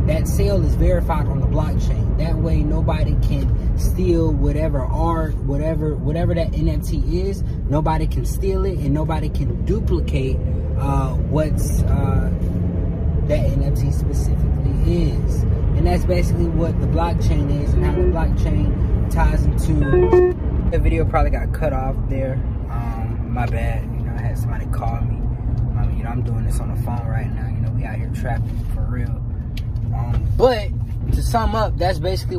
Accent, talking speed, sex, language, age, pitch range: American, 165 wpm, male, English, 20-39, 80-115 Hz